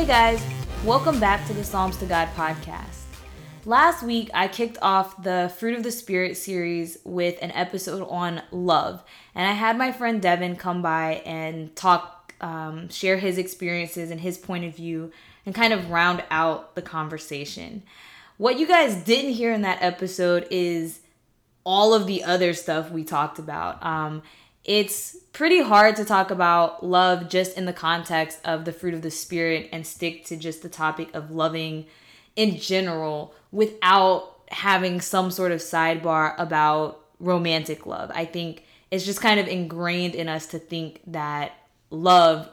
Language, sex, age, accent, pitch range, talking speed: English, female, 20-39, American, 160-190 Hz, 165 wpm